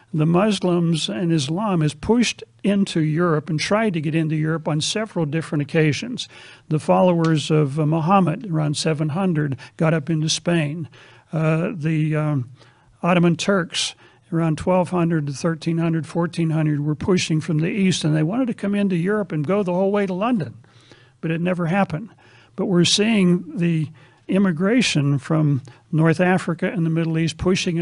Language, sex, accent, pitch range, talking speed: English, male, American, 155-185 Hz, 160 wpm